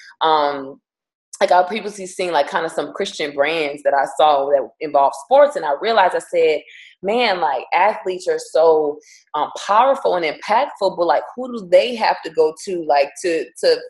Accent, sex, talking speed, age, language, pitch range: American, female, 185 wpm, 20-39, English, 150-225 Hz